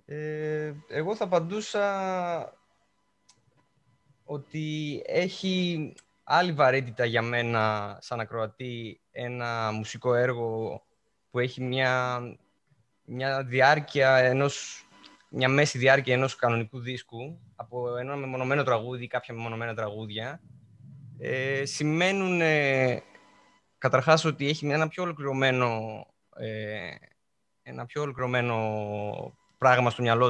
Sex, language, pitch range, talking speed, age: male, Greek, 120-155 Hz, 100 wpm, 20-39